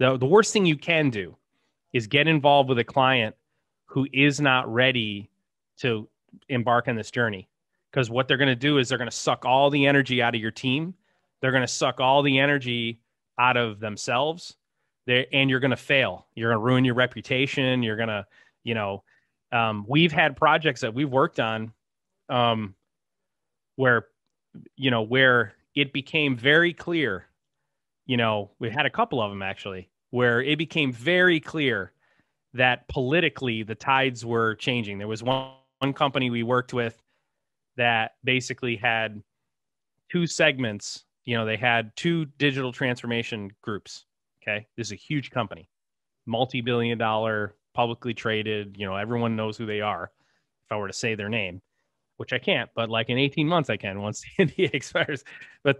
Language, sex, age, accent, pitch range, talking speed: English, male, 30-49, American, 115-140 Hz, 175 wpm